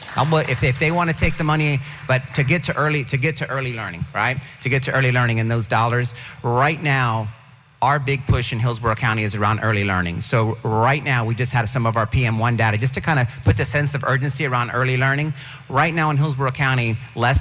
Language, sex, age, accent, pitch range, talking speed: English, male, 40-59, American, 115-140 Hz, 225 wpm